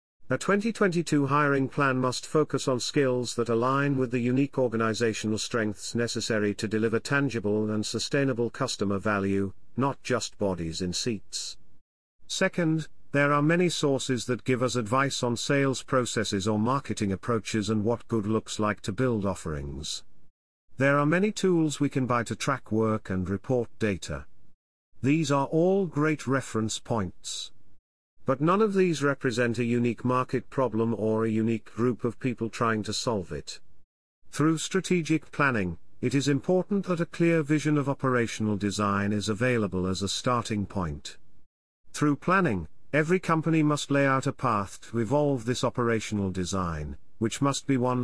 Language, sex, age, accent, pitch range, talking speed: English, male, 50-69, British, 105-140 Hz, 155 wpm